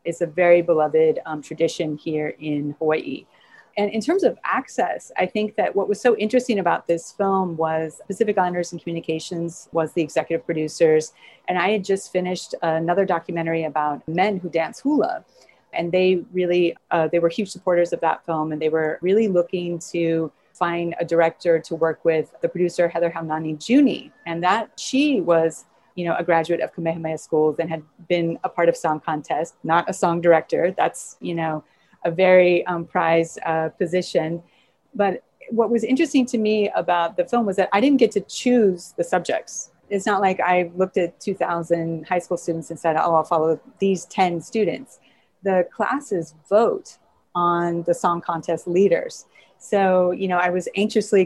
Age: 30-49